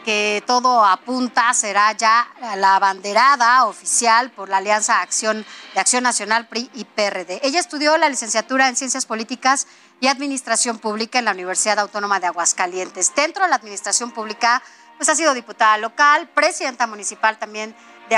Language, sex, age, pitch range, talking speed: Spanish, female, 40-59, 205-255 Hz, 155 wpm